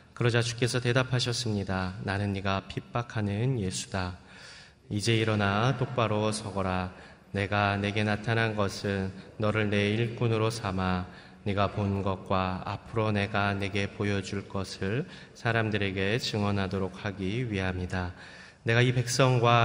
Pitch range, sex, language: 95-115 Hz, male, Korean